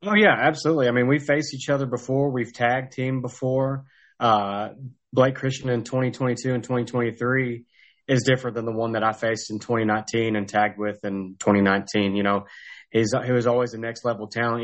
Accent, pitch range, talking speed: American, 105-125 Hz, 190 wpm